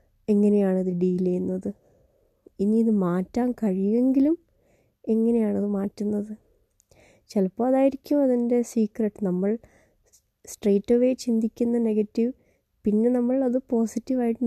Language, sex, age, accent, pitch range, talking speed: Malayalam, female, 20-39, native, 195-230 Hz, 85 wpm